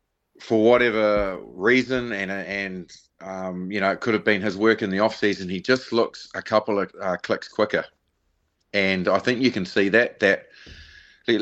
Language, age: English, 30-49